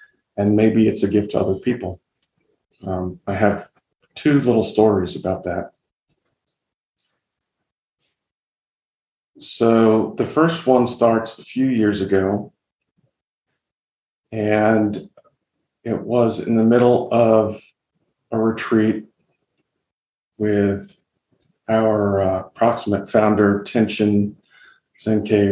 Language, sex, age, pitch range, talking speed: English, male, 40-59, 100-110 Hz, 95 wpm